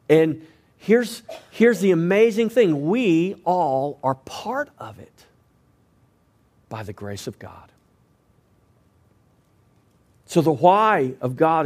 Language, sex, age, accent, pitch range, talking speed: English, male, 40-59, American, 125-180 Hz, 115 wpm